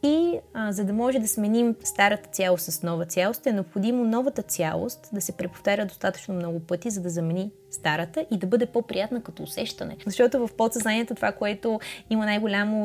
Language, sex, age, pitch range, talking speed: Bulgarian, female, 20-39, 180-235 Hz, 180 wpm